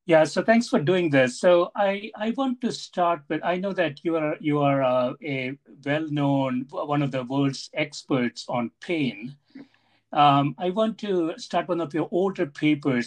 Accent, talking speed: Indian, 190 wpm